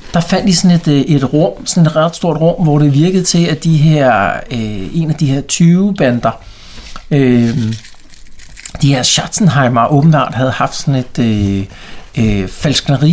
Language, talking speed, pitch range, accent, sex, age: Danish, 175 wpm, 115-155 Hz, native, male, 60-79